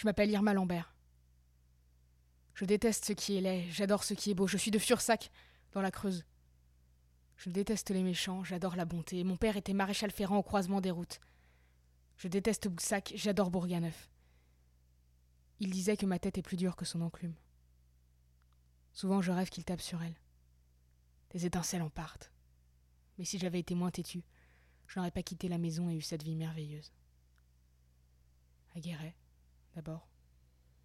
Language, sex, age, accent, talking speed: French, female, 20-39, French, 165 wpm